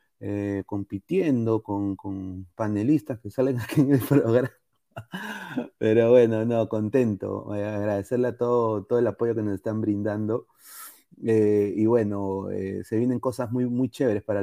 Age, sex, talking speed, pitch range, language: 30-49, male, 160 wpm, 105-130 Hz, Spanish